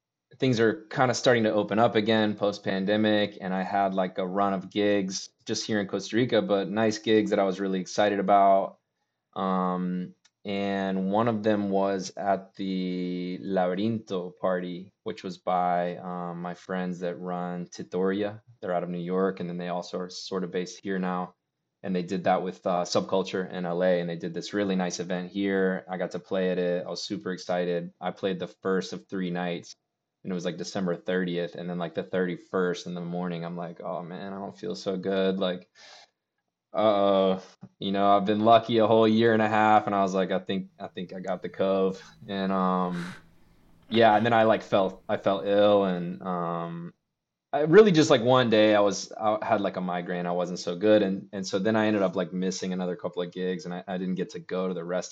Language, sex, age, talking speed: English, male, 20-39, 220 wpm